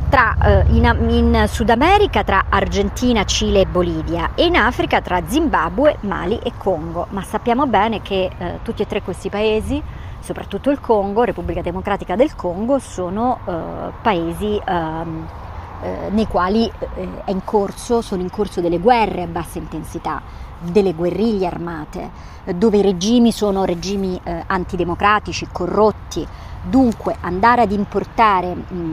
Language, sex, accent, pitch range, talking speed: Italian, male, native, 170-215 Hz, 145 wpm